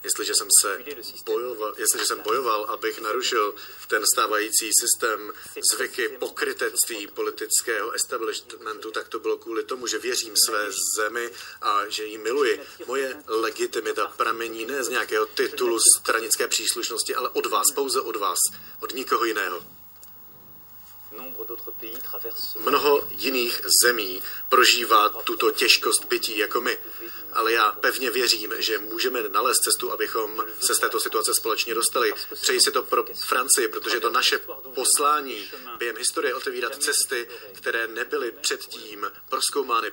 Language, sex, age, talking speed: Slovak, male, 40-59, 130 wpm